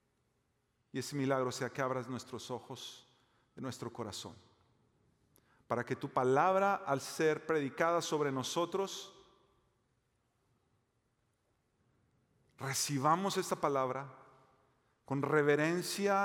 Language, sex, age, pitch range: Spanish, male, 40-59, 120-150 Hz